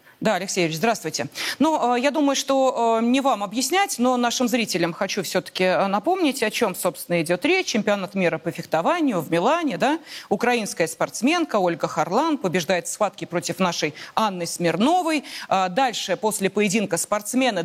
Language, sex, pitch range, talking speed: Russian, female, 190-275 Hz, 145 wpm